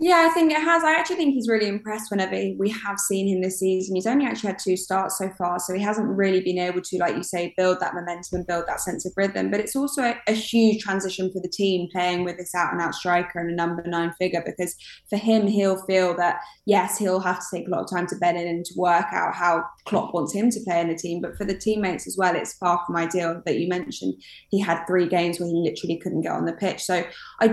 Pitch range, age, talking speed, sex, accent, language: 175-195 Hz, 10-29, 265 wpm, female, British, English